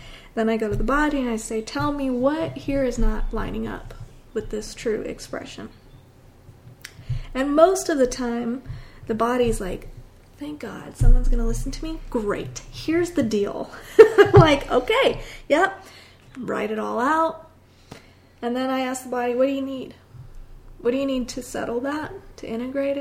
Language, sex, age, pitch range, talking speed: English, female, 30-49, 215-255 Hz, 175 wpm